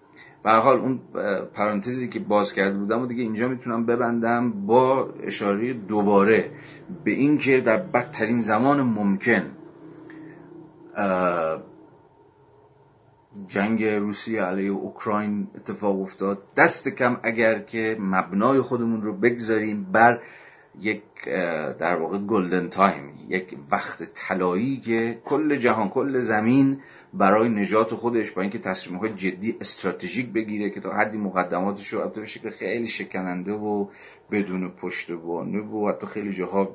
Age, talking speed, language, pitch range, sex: 40-59, 125 wpm, Persian, 90-115 Hz, male